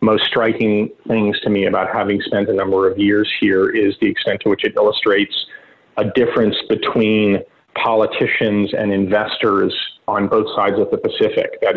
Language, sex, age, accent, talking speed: English, male, 30-49, American, 170 wpm